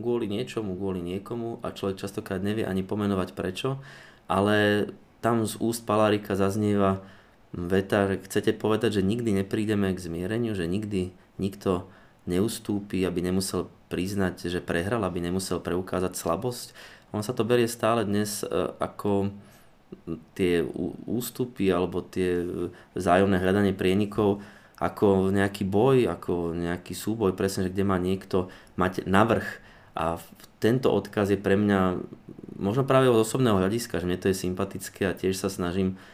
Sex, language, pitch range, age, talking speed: male, Slovak, 90-105 Hz, 20-39, 140 wpm